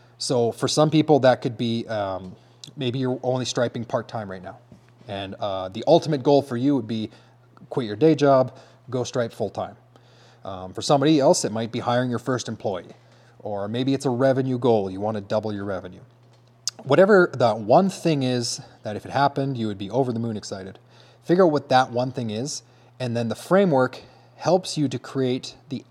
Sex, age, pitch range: male, 30-49, 110-135 Hz